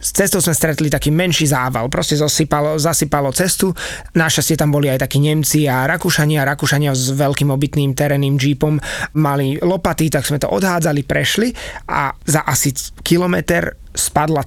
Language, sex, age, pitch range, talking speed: Slovak, male, 20-39, 145-165 Hz, 155 wpm